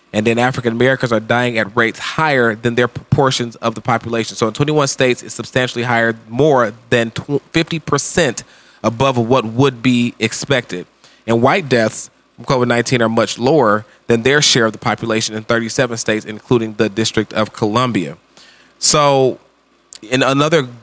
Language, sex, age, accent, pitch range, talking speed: English, male, 20-39, American, 115-140 Hz, 155 wpm